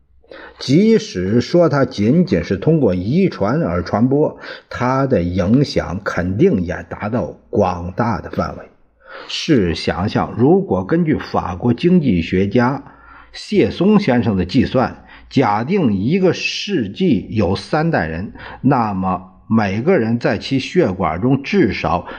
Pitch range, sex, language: 90-135 Hz, male, Chinese